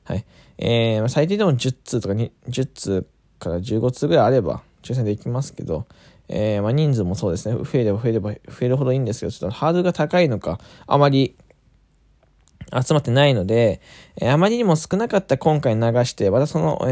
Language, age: Japanese, 20-39